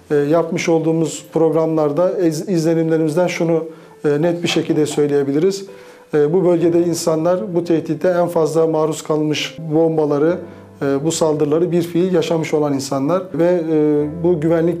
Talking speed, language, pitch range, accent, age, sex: 120 wpm, Turkish, 155-175 Hz, native, 40-59, male